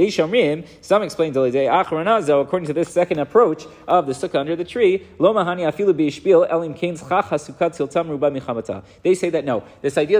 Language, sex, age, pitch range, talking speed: English, male, 30-49, 130-175 Hz, 110 wpm